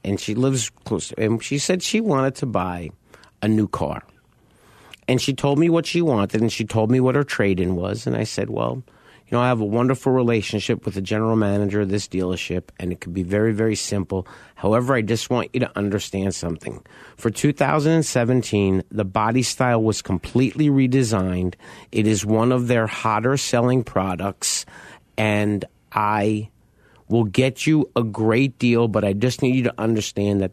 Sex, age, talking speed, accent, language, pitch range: male, 50-69, 185 wpm, American, English, 100-125 Hz